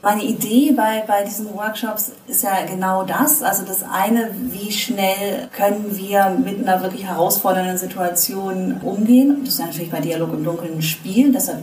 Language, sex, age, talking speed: German, female, 30-49, 170 wpm